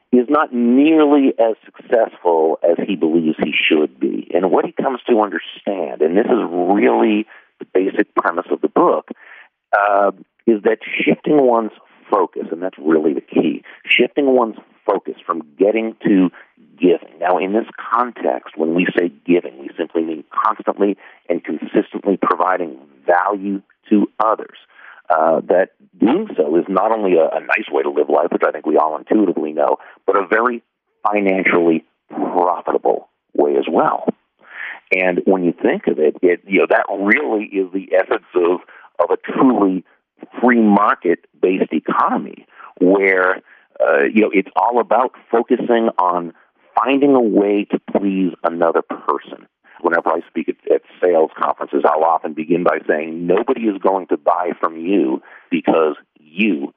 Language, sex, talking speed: English, male, 160 wpm